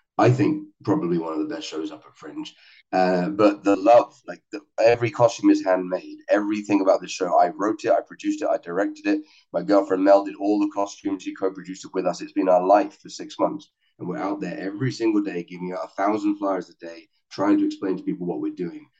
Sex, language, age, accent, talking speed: male, English, 30-49, British, 235 wpm